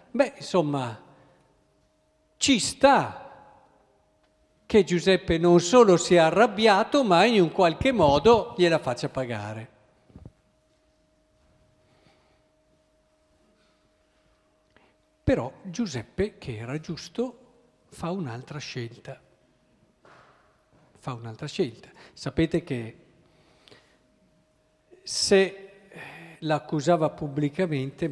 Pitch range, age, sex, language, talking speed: 125-180 Hz, 50-69, male, Italian, 75 wpm